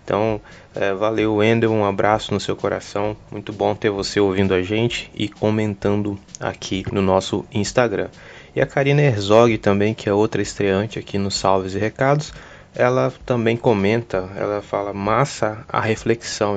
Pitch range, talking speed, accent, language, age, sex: 100-115 Hz, 155 wpm, Brazilian, Portuguese, 20-39, male